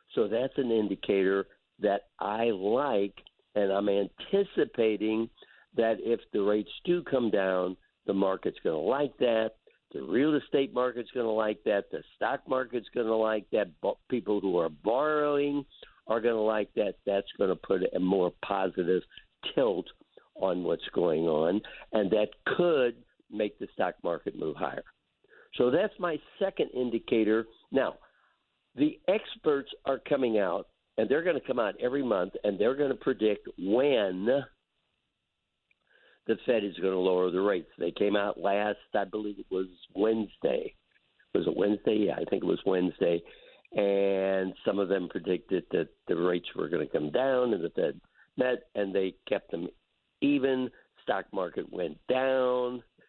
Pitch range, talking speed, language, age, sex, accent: 100-130 Hz, 165 wpm, English, 60-79, male, American